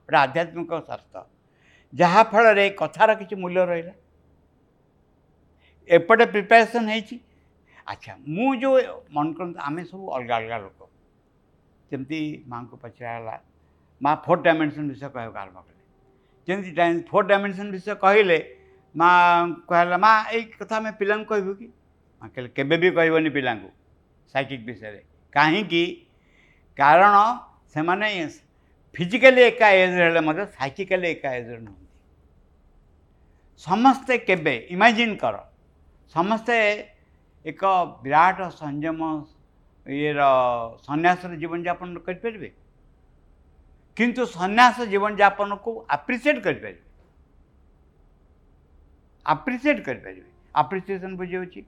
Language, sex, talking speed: English, male, 90 wpm